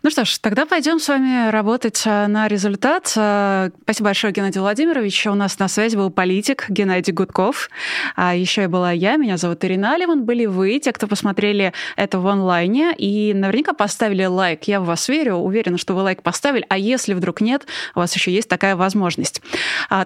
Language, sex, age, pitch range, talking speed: Russian, female, 20-39, 185-235 Hz, 185 wpm